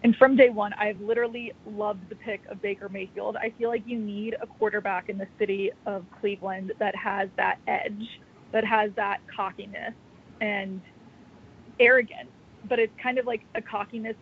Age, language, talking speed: 20-39, English, 175 wpm